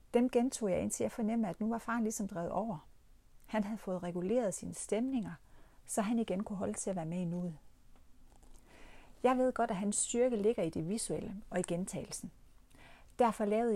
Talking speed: 190 wpm